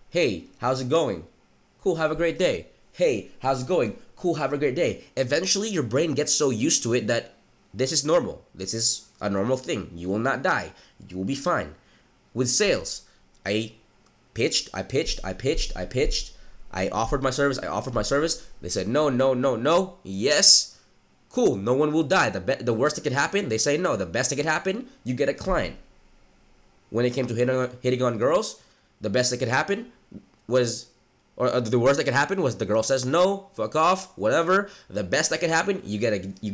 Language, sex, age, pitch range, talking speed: English, male, 20-39, 110-150 Hz, 215 wpm